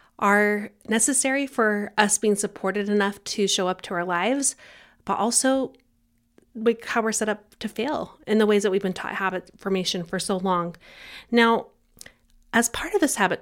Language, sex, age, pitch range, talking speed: English, female, 30-49, 190-230 Hz, 175 wpm